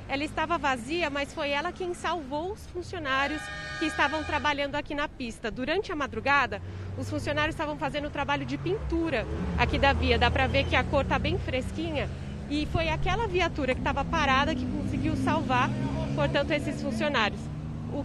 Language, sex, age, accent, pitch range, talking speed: Portuguese, female, 20-39, Brazilian, 245-315 Hz, 175 wpm